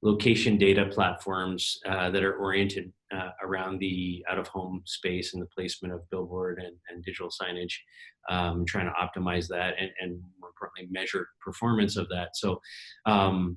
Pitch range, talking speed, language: 90-100 Hz, 160 wpm, English